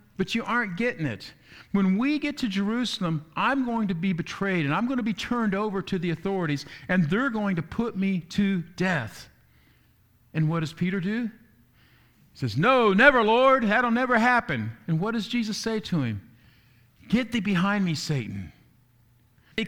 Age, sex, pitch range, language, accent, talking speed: 50-69, male, 140-225 Hz, English, American, 180 wpm